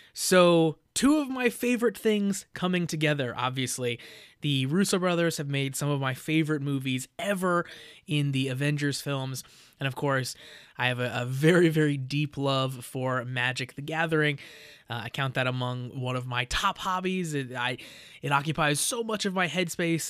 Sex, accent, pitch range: male, American, 140-185 Hz